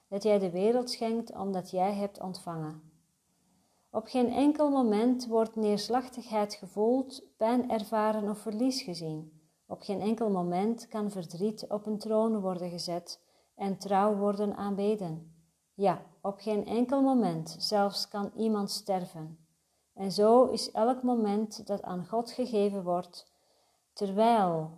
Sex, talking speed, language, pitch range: female, 135 wpm, Dutch, 180-225 Hz